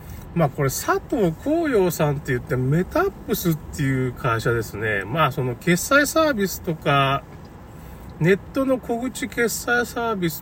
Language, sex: Japanese, male